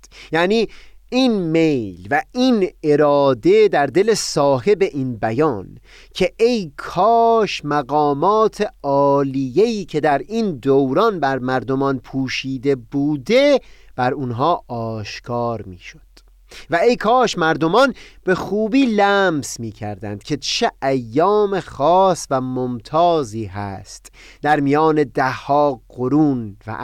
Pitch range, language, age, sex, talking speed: 130-195 Hz, Persian, 30-49, male, 105 wpm